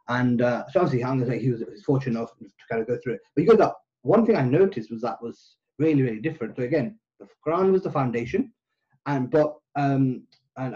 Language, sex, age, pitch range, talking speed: English, male, 30-49, 125-150 Hz, 230 wpm